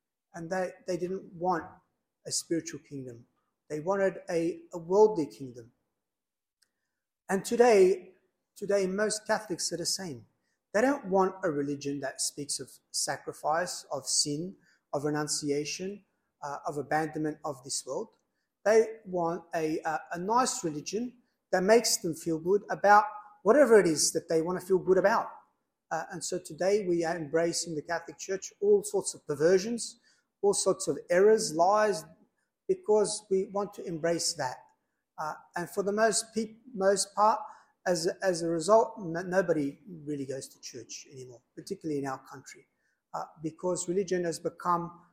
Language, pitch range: English, 155-200 Hz